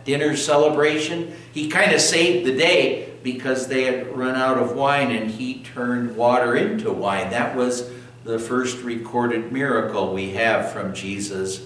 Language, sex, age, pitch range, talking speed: English, male, 60-79, 115-145 Hz, 160 wpm